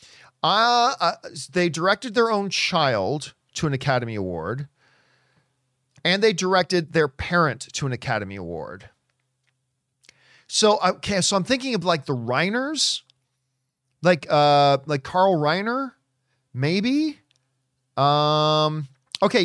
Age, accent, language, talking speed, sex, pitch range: 40-59, American, English, 115 wpm, male, 140-215 Hz